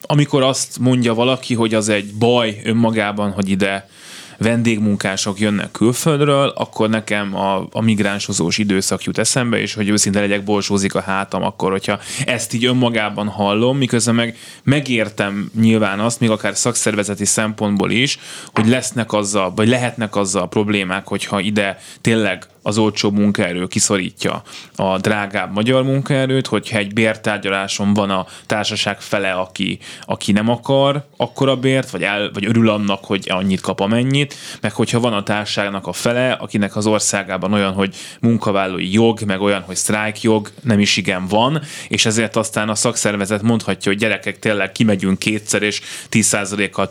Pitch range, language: 100-115 Hz, Hungarian